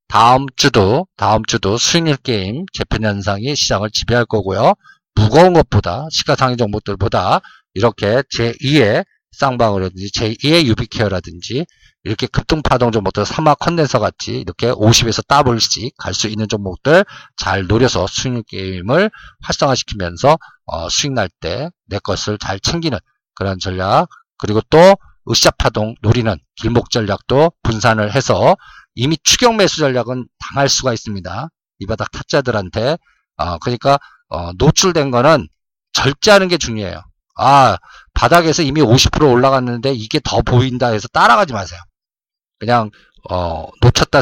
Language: Korean